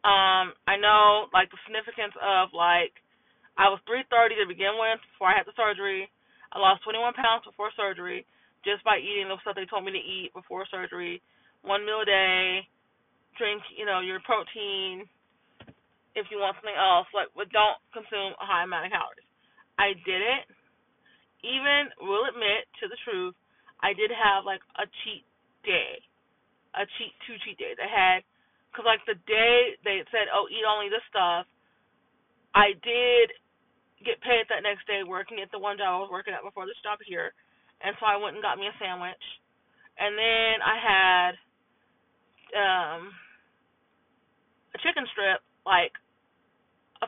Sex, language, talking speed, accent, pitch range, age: female, English, 170 wpm, American, 195-255 Hz, 20-39